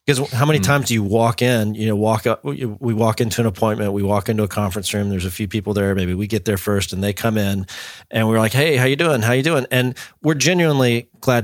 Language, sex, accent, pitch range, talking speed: English, male, American, 105-130 Hz, 270 wpm